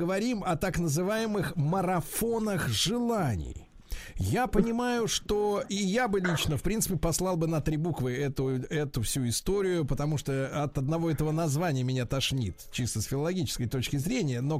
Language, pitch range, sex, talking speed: Russian, 145-205 Hz, male, 155 wpm